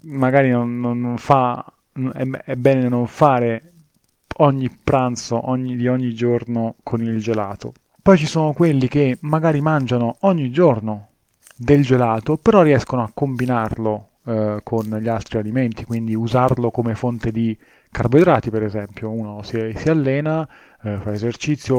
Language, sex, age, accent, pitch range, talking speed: Italian, male, 30-49, native, 110-135 Hz, 145 wpm